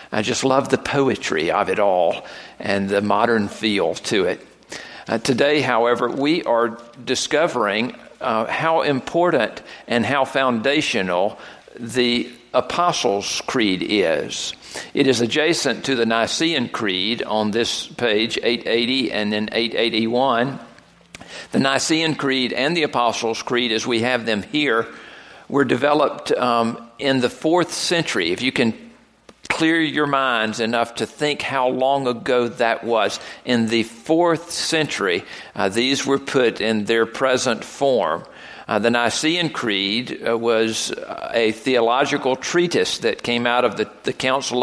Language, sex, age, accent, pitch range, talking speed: English, male, 50-69, American, 115-150 Hz, 140 wpm